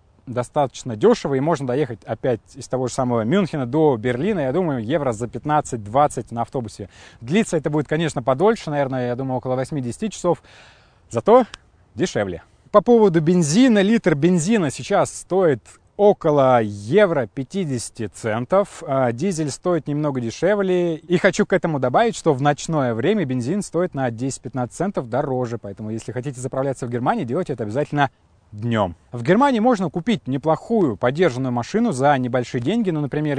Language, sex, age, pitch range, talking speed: Russian, male, 20-39, 125-175 Hz, 155 wpm